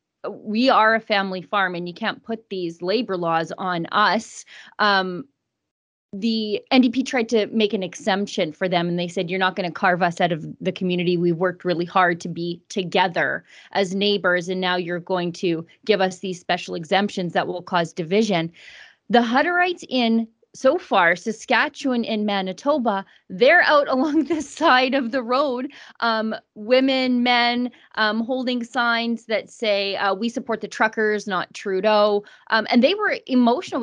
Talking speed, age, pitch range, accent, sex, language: 170 wpm, 30-49, 185-240 Hz, American, female, English